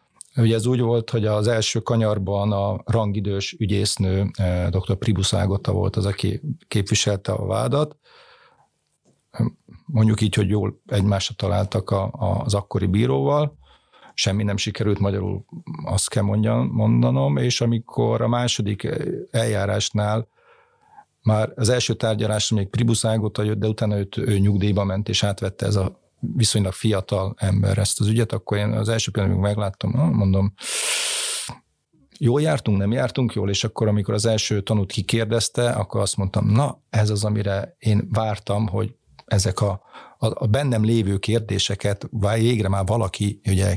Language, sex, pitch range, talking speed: Hungarian, male, 100-115 Hz, 145 wpm